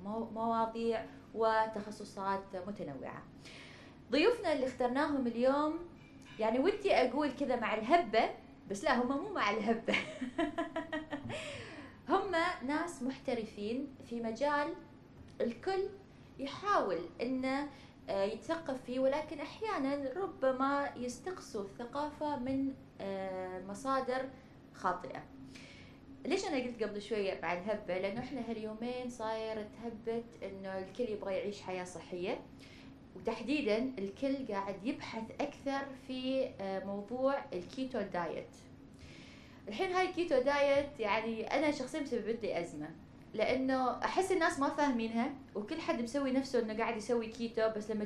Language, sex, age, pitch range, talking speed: Arabic, female, 20-39, 215-280 Hz, 110 wpm